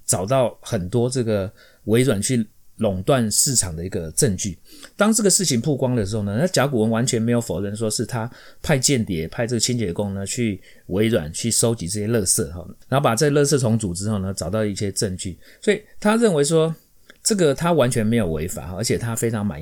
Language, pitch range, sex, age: Chinese, 95-125 Hz, male, 30-49